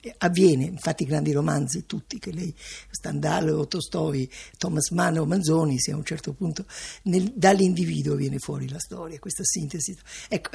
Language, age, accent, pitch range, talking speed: Italian, 50-69, native, 165-235 Hz, 160 wpm